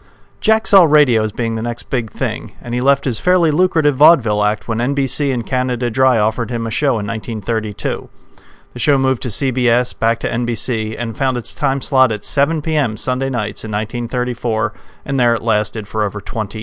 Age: 40-59